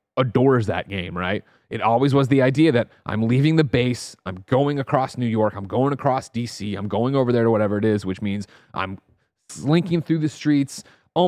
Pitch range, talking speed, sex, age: 110-145 Hz, 205 wpm, male, 30-49